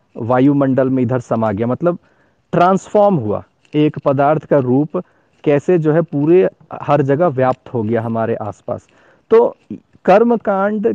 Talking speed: 140 wpm